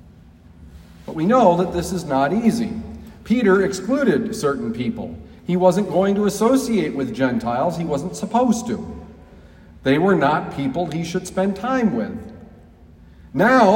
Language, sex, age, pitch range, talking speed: English, male, 50-69, 120-200 Hz, 140 wpm